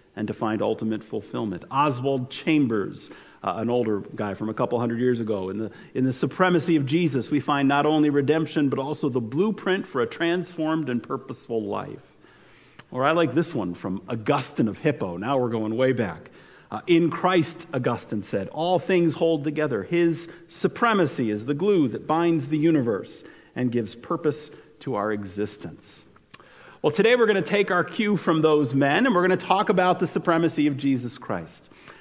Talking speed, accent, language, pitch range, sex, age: 185 wpm, American, English, 125-170 Hz, male, 50-69